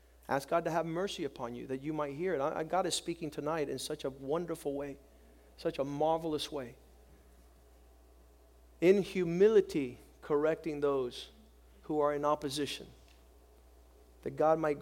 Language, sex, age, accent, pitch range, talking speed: English, male, 40-59, American, 115-155 Hz, 145 wpm